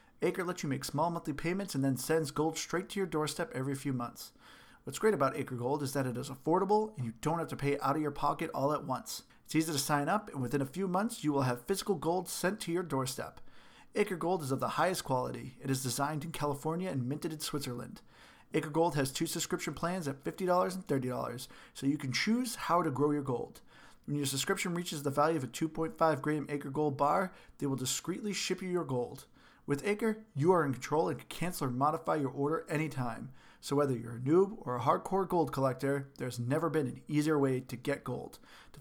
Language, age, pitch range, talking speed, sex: English, 40-59, 135-175 Hz, 230 wpm, male